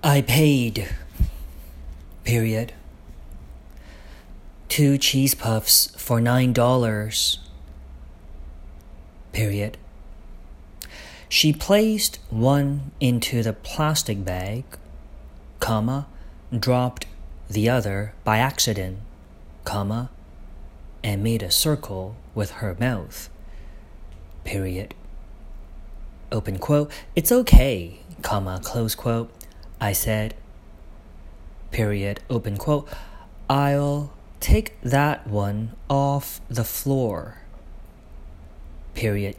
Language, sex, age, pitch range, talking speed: English, male, 40-59, 75-125 Hz, 80 wpm